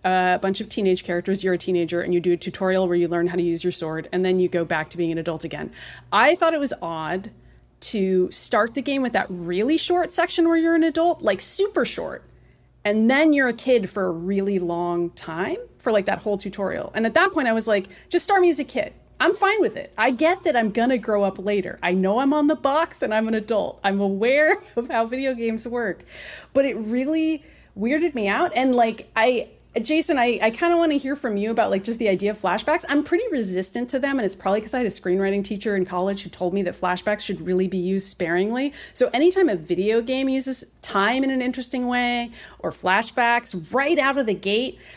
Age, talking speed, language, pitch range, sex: 30-49, 240 wpm, English, 190-275 Hz, female